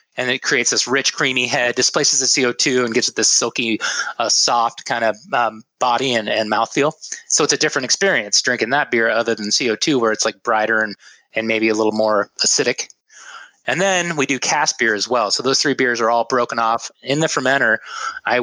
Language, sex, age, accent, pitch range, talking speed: English, male, 20-39, American, 115-140 Hz, 215 wpm